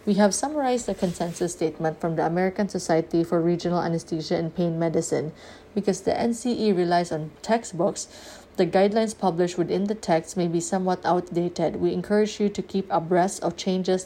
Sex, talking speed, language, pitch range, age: female, 170 wpm, English, 175-200 Hz, 20-39